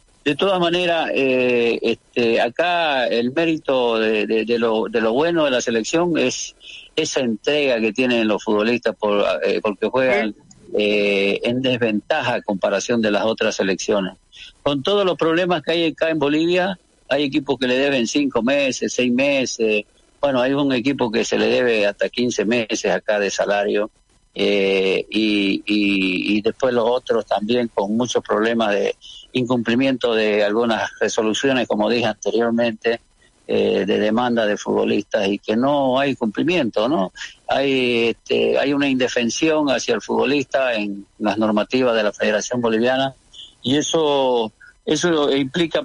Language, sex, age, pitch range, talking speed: Spanish, male, 50-69, 110-145 Hz, 155 wpm